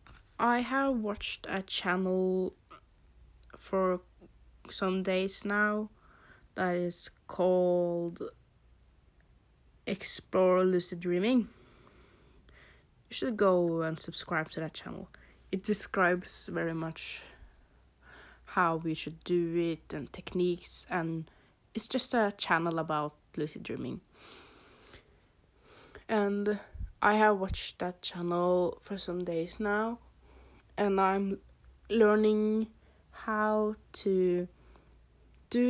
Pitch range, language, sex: 165-200 Hz, English, female